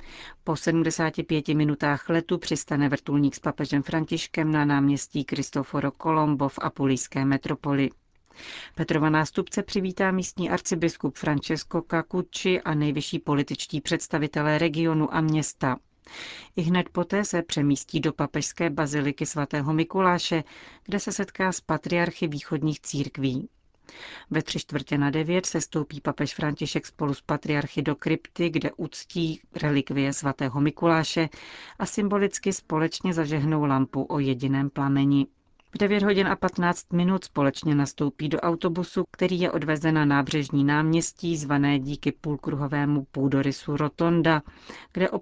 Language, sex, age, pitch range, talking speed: Czech, female, 40-59, 145-165 Hz, 130 wpm